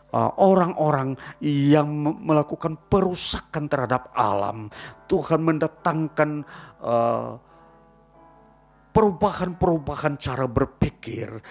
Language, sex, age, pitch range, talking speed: Indonesian, male, 40-59, 135-180 Hz, 70 wpm